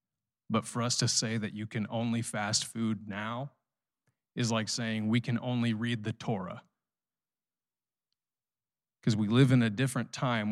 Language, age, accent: English, 30-49, American